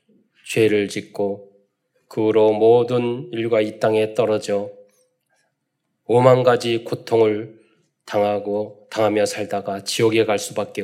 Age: 20-39